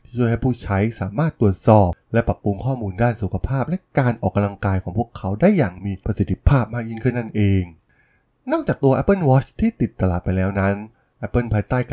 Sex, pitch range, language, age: male, 95-130 Hz, Thai, 20-39